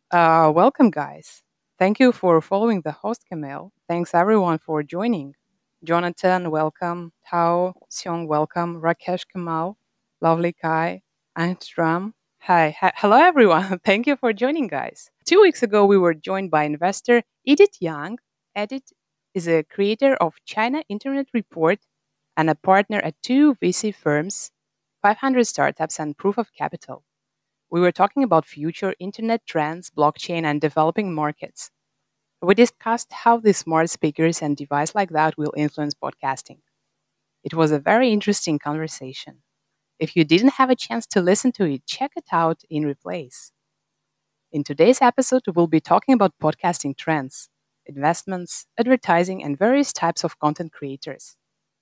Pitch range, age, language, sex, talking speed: 155-215 Hz, 20-39, English, female, 145 wpm